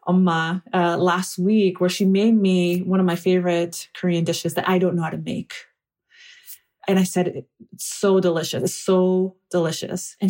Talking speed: 180 wpm